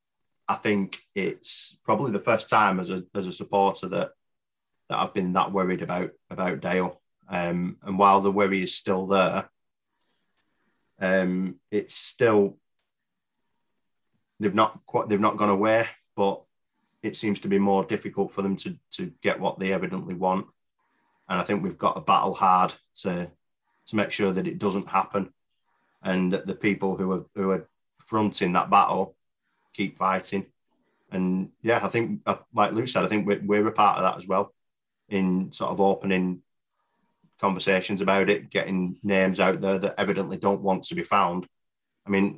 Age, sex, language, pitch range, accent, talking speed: 30-49, male, English, 95-100 Hz, British, 170 wpm